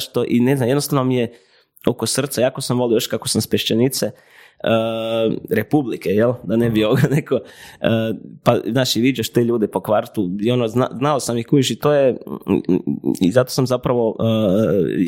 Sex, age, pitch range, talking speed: male, 20-39, 115-135 Hz, 180 wpm